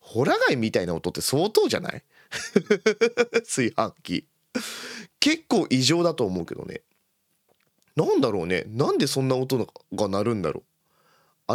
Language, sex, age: Japanese, male, 30-49